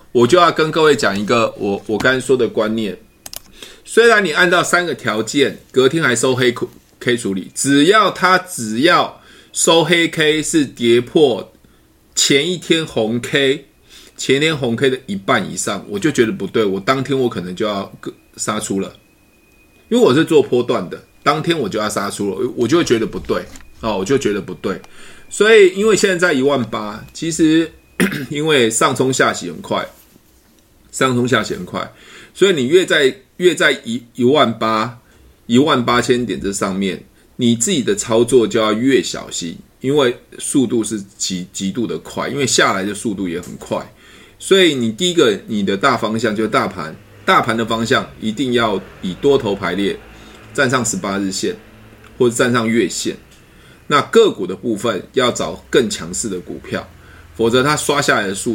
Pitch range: 110-150 Hz